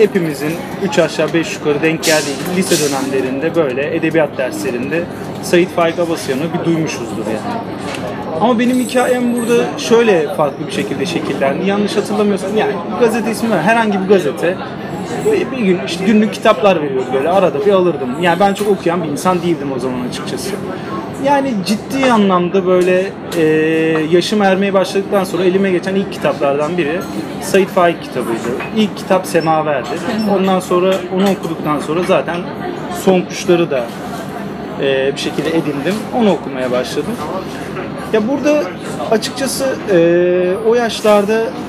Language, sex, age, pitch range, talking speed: Turkish, male, 30-49, 170-220 Hz, 140 wpm